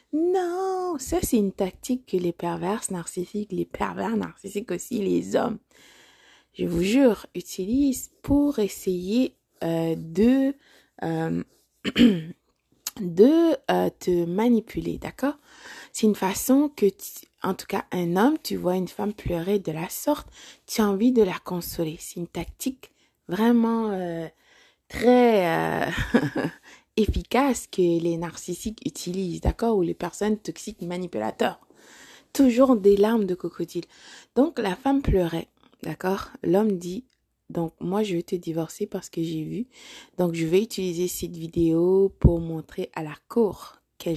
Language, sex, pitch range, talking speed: French, female, 175-250 Hz, 145 wpm